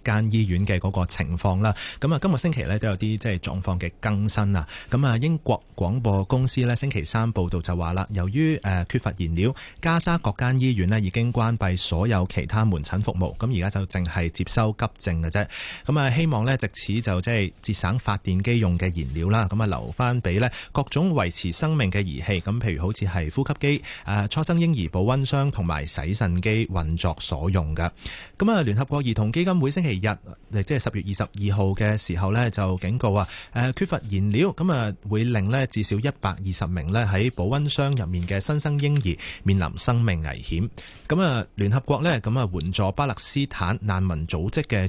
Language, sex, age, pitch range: Chinese, male, 30-49, 95-125 Hz